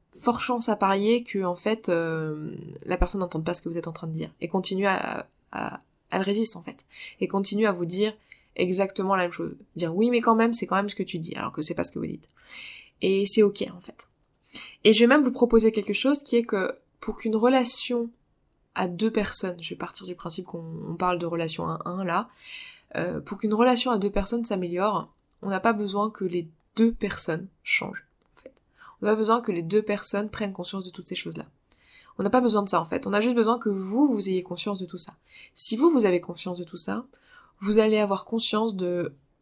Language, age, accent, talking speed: French, 20-39, French, 235 wpm